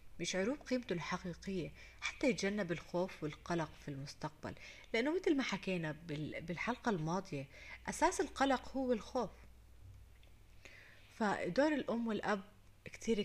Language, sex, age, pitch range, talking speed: Arabic, female, 30-49, 135-190 Hz, 105 wpm